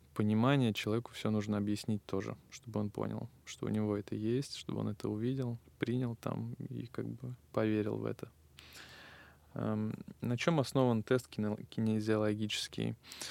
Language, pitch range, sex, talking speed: Russian, 105-120 Hz, male, 140 wpm